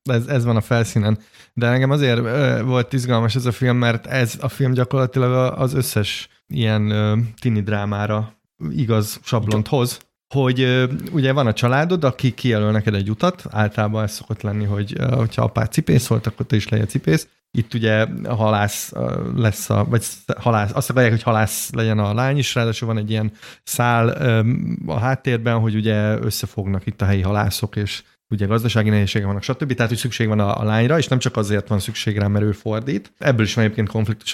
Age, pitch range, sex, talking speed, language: 30-49, 110-130 Hz, male, 195 wpm, Hungarian